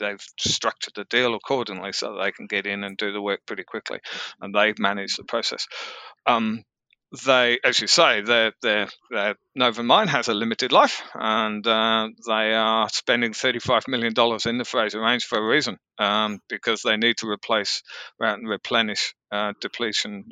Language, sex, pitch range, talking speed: English, male, 105-120 Hz, 175 wpm